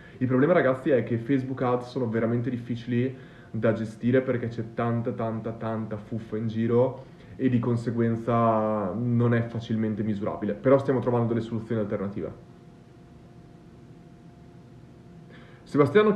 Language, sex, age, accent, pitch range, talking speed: Italian, male, 30-49, native, 120-155 Hz, 130 wpm